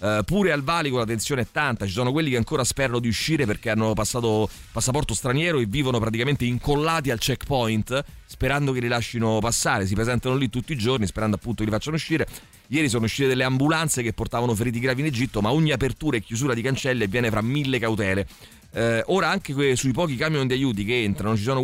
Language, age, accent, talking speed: Italian, 30-49, native, 210 wpm